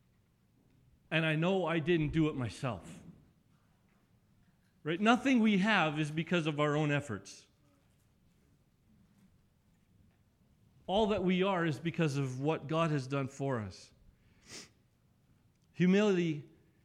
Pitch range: 135-185 Hz